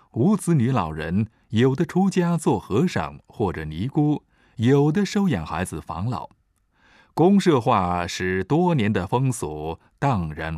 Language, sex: Chinese, male